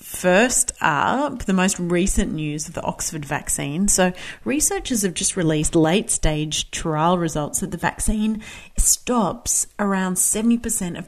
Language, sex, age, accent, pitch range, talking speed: English, female, 40-59, Australian, 155-200 Hz, 140 wpm